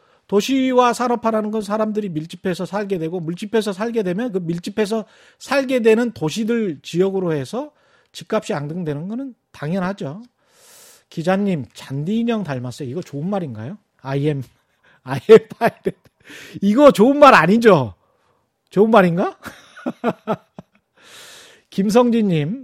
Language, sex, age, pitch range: Korean, male, 40-59, 155-230 Hz